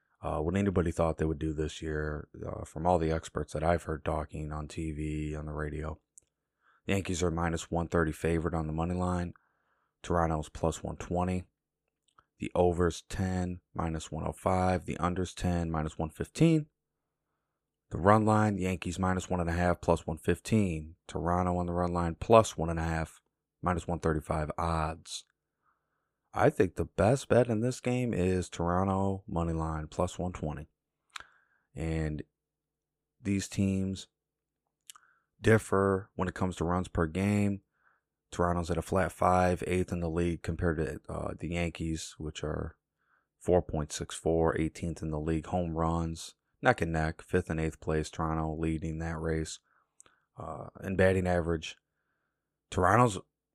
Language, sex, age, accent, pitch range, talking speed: English, male, 30-49, American, 80-90 Hz, 140 wpm